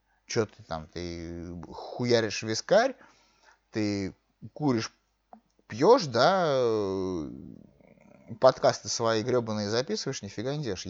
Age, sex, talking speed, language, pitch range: 30-49, male, 95 wpm, Russian, 110-170 Hz